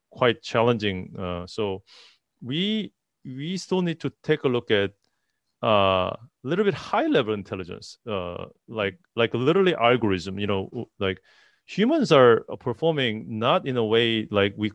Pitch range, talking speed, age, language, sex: 100-145 Hz, 150 wpm, 30-49, English, male